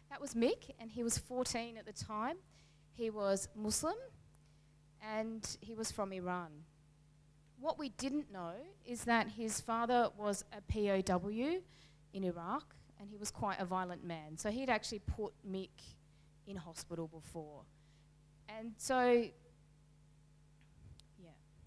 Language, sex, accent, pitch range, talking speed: English, female, Australian, 165-240 Hz, 135 wpm